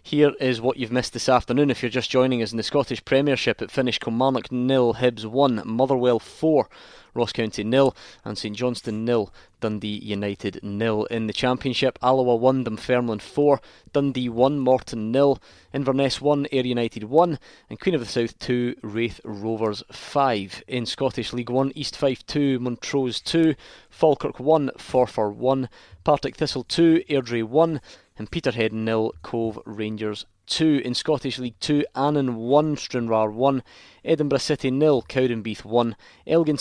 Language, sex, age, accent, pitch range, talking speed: English, male, 20-39, British, 110-135 Hz, 160 wpm